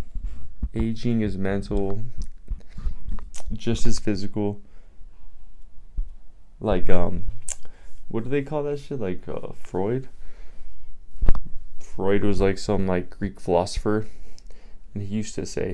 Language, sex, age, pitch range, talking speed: English, male, 20-39, 75-105 Hz, 110 wpm